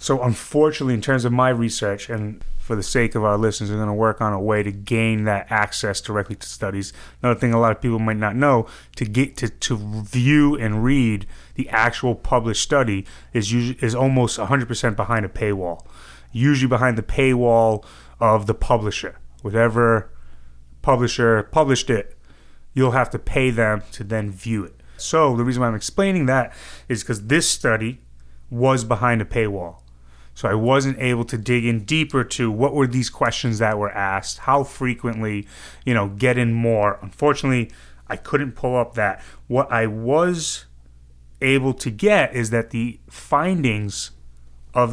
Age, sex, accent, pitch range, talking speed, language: 30-49, male, American, 105-130 Hz, 175 wpm, English